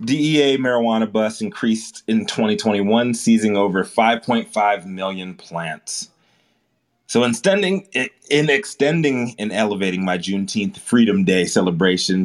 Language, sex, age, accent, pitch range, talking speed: English, male, 30-49, American, 95-130 Hz, 115 wpm